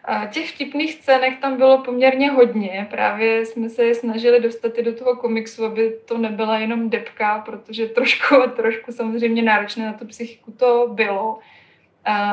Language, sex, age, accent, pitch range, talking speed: Czech, female, 20-39, native, 220-240 Hz, 165 wpm